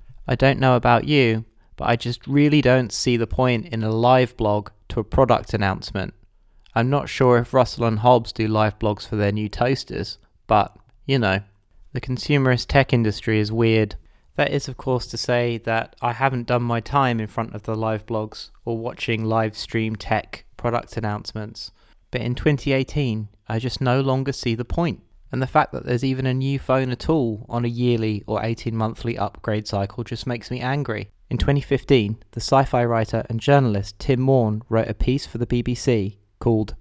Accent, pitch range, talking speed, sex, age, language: British, 110-125 Hz, 190 wpm, male, 20-39, English